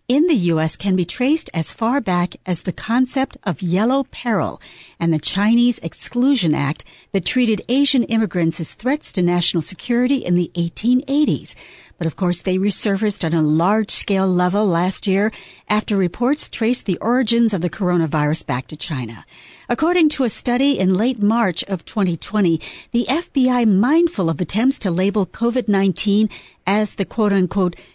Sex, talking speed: female, 160 wpm